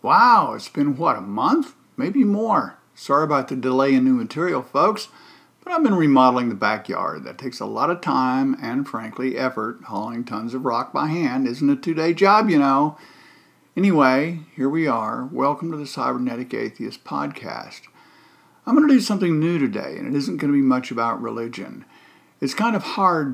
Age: 50-69